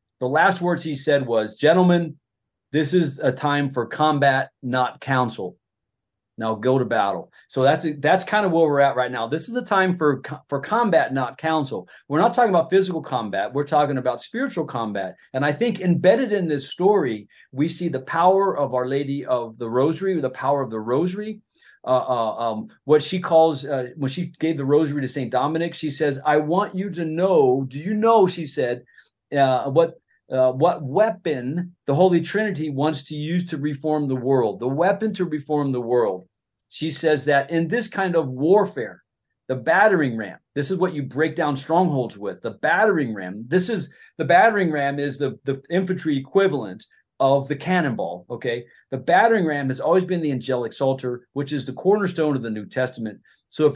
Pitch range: 130-175 Hz